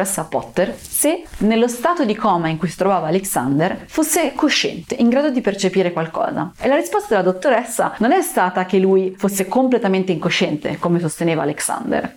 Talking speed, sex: 170 wpm, female